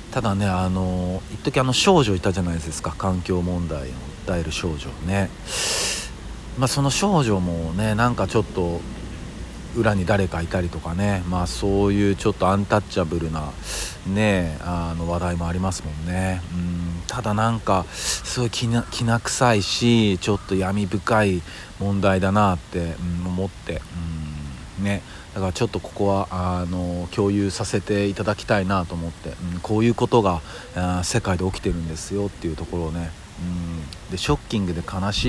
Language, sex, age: Japanese, male, 50-69